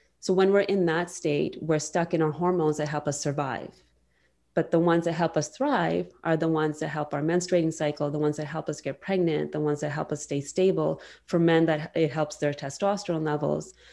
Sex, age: female, 30-49